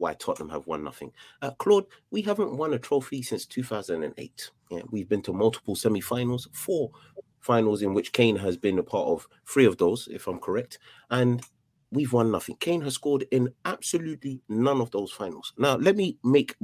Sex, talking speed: male, 190 wpm